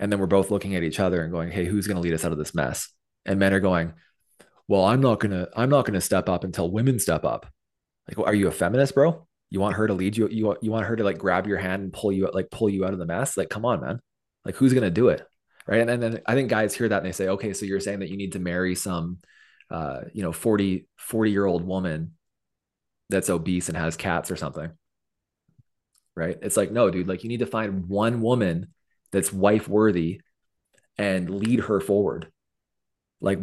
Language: English